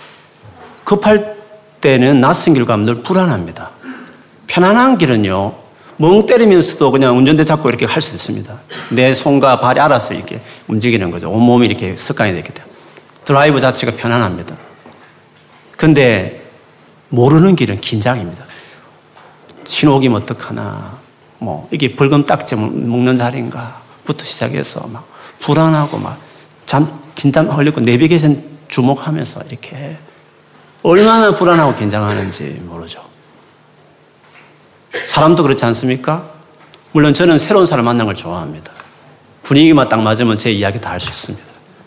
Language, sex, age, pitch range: Korean, male, 40-59, 115-155 Hz